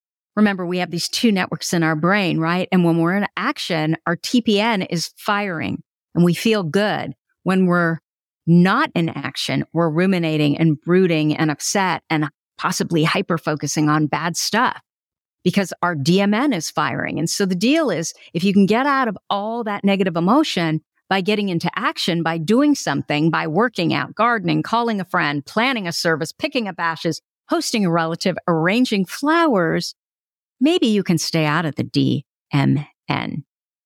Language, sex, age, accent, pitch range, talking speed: English, female, 50-69, American, 160-205 Hz, 165 wpm